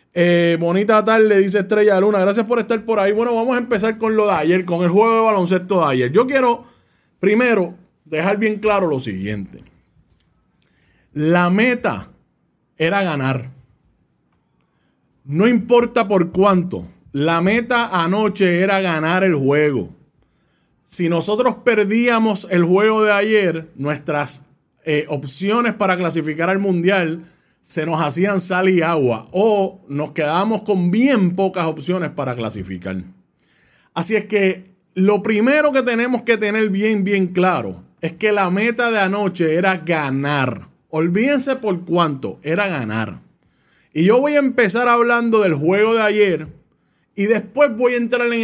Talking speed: 145 wpm